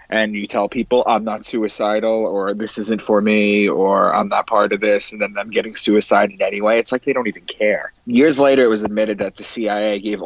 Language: English